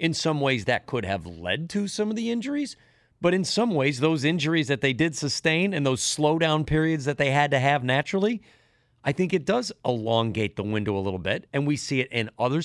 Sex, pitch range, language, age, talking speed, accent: male, 115-155 Hz, English, 40-59, 230 wpm, American